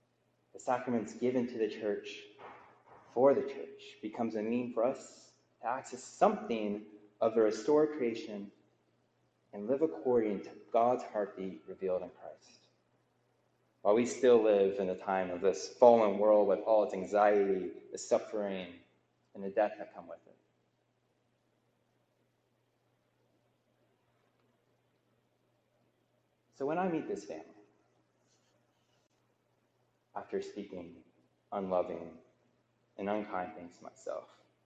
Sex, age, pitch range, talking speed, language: male, 30-49, 95-125 Hz, 120 wpm, English